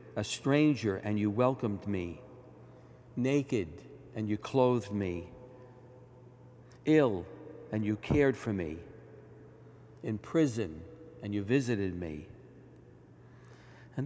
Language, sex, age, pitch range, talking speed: English, male, 60-79, 105-135 Hz, 100 wpm